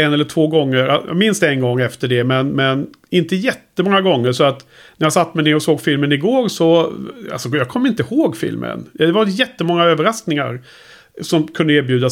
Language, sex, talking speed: Swedish, male, 195 wpm